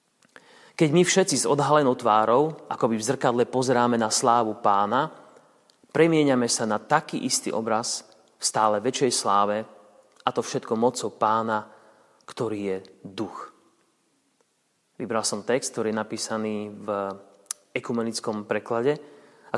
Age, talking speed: 30-49, 125 wpm